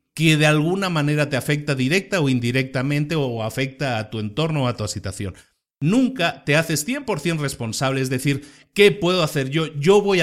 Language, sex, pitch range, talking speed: Spanish, male, 125-165 Hz, 190 wpm